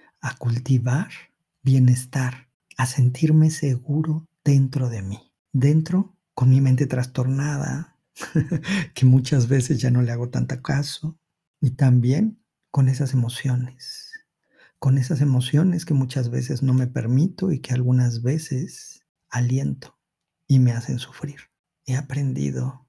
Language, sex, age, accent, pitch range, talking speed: Spanish, male, 50-69, Mexican, 125-150 Hz, 125 wpm